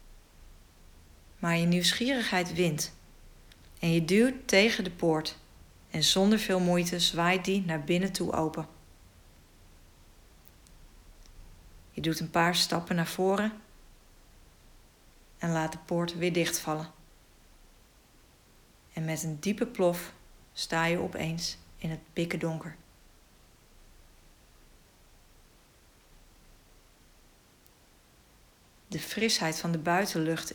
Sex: female